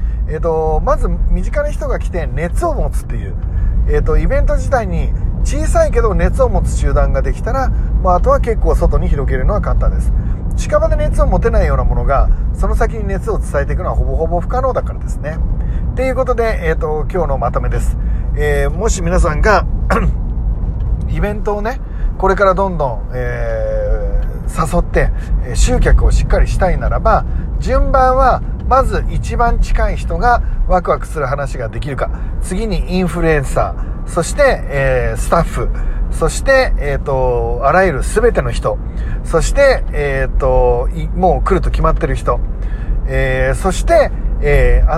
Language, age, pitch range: Japanese, 40-59, 125-195 Hz